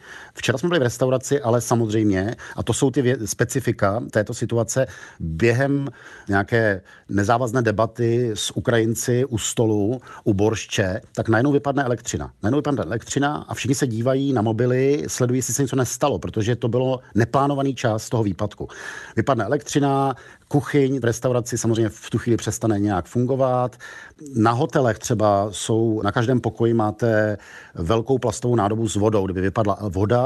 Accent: native